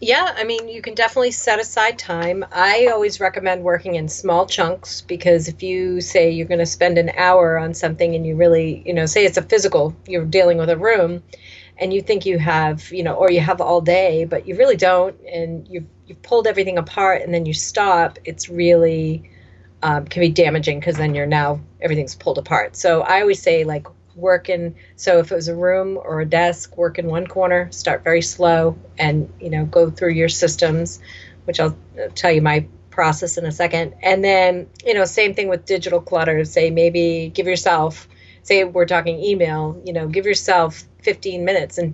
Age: 40-59